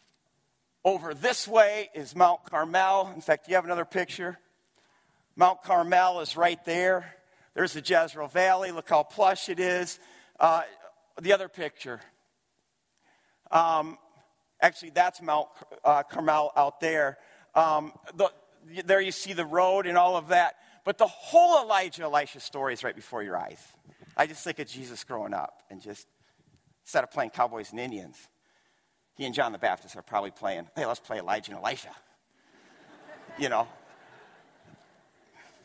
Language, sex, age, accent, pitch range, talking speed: English, male, 50-69, American, 150-185 Hz, 155 wpm